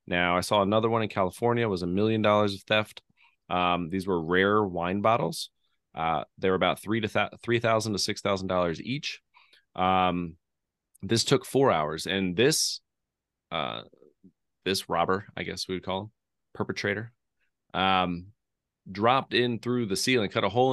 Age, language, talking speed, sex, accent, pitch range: 30-49, English, 170 wpm, male, American, 95-115 Hz